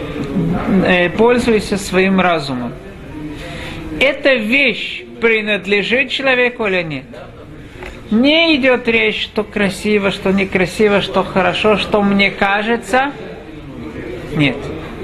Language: Russian